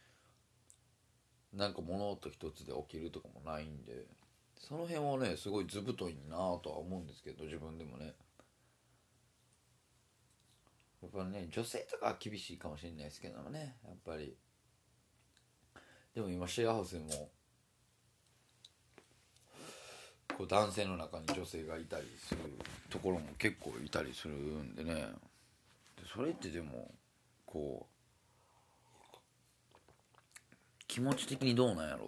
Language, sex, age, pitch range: Japanese, male, 40-59, 80-115 Hz